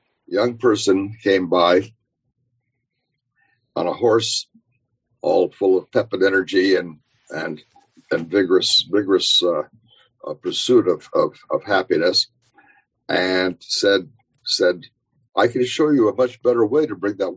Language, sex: English, male